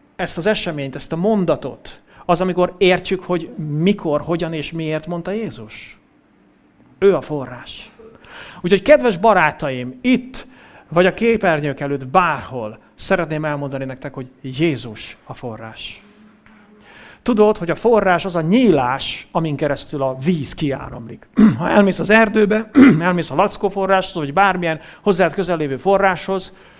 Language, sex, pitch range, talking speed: English, male, 145-205 Hz, 140 wpm